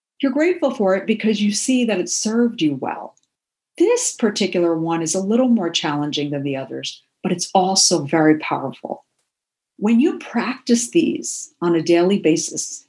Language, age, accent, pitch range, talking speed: English, 50-69, American, 165-235 Hz, 170 wpm